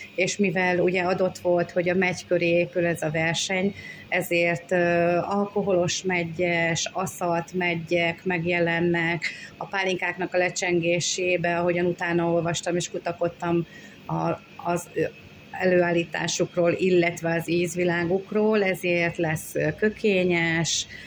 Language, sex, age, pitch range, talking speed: Hungarian, female, 30-49, 165-180 Hz, 100 wpm